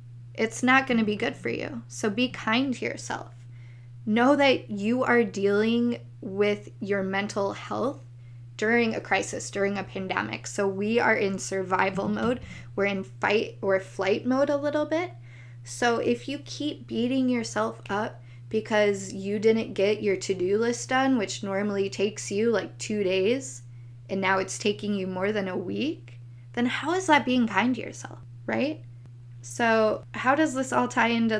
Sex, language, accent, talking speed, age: female, English, American, 170 wpm, 10-29